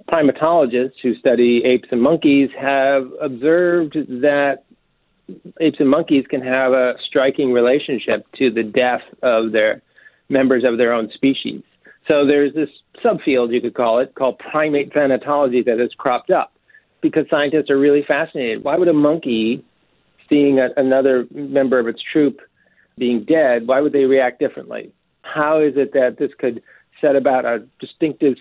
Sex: male